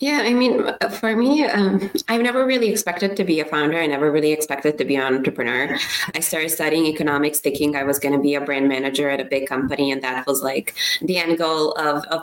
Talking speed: 235 wpm